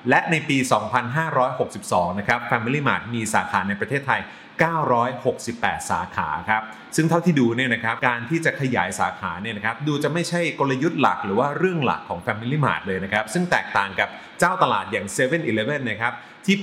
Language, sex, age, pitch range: Thai, male, 30-49, 110-150 Hz